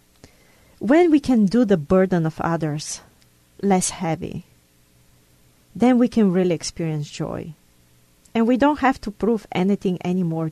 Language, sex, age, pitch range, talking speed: English, female, 40-59, 145-200 Hz, 135 wpm